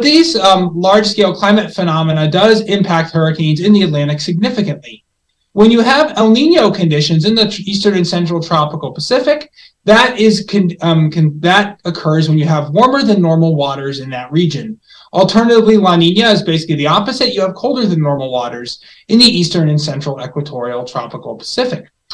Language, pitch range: English, 160-220 Hz